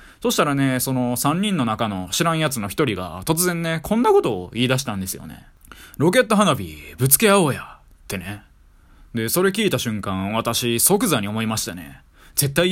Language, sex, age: Japanese, male, 20-39